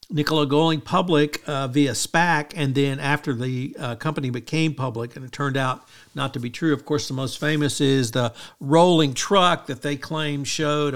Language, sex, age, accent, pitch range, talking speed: English, male, 60-79, American, 135-160 Hz, 190 wpm